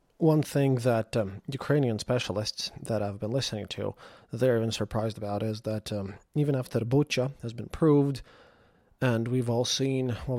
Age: 20-39